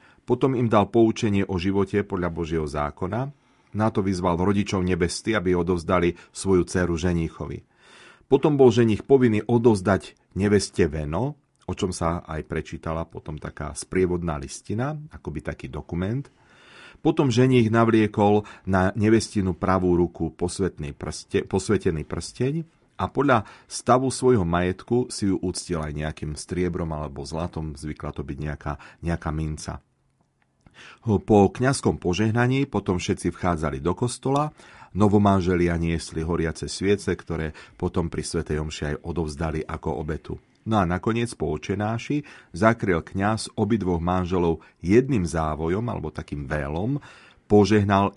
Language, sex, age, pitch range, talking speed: Slovak, male, 40-59, 80-110 Hz, 130 wpm